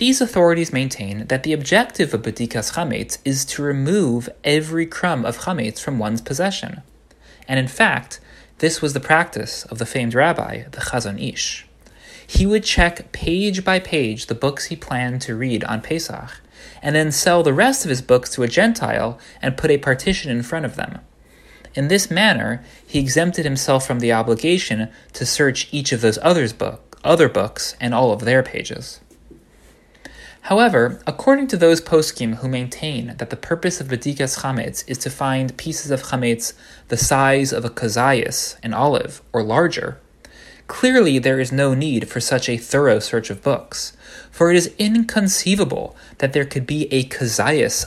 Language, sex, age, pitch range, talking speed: English, male, 30-49, 125-170 Hz, 170 wpm